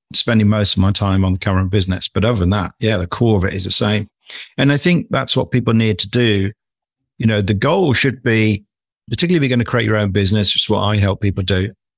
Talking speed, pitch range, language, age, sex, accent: 260 wpm, 100-120 Hz, English, 50-69, male, British